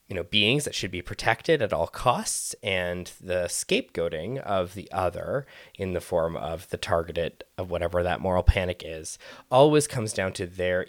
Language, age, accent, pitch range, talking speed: English, 20-39, American, 85-115 Hz, 180 wpm